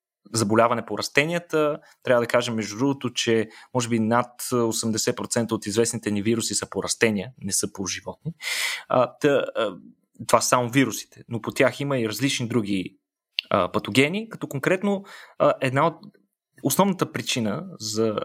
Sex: male